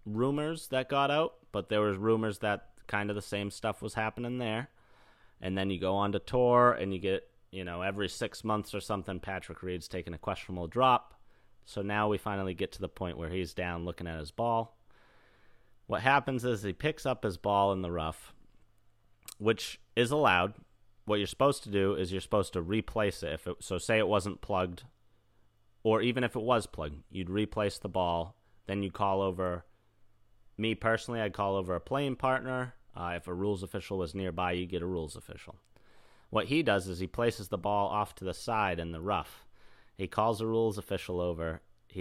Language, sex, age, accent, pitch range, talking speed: English, male, 30-49, American, 95-115 Hz, 205 wpm